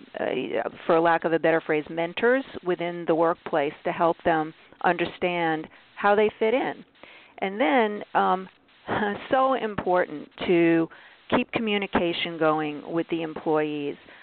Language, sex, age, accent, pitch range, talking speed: English, female, 50-69, American, 165-200 Hz, 135 wpm